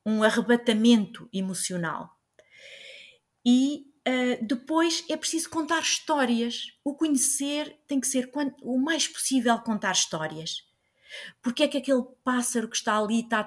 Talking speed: 130 wpm